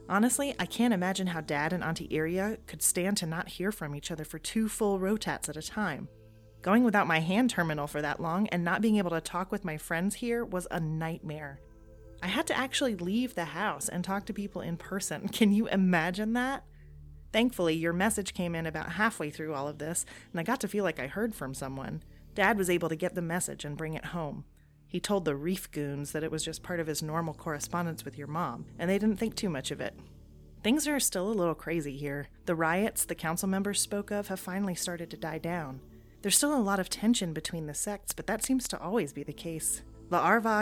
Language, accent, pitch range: English, American, 150-205 Hz